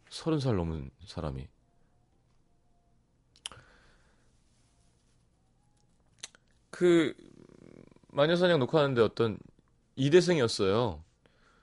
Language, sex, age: Korean, male, 30-49